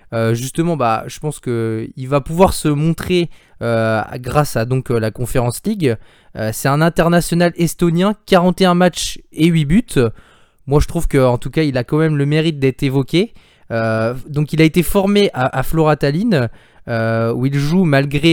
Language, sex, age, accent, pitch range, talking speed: French, male, 20-39, French, 120-165 Hz, 185 wpm